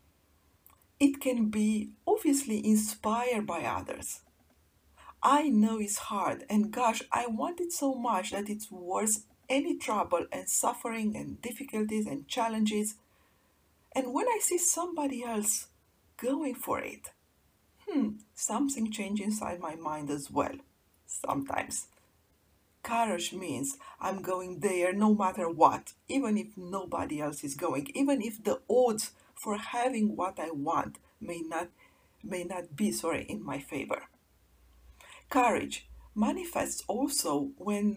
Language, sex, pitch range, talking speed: English, female, 175-265 Hz, 130 wpm